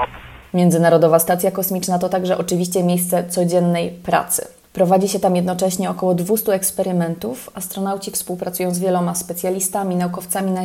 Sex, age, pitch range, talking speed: female, 20-39, 175-200 Hz, 130 wpm